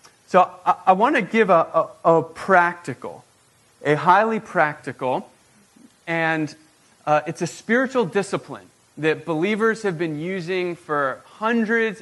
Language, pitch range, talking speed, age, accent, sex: English, 150-190 Hz, 125 wpm, 30-49, American, male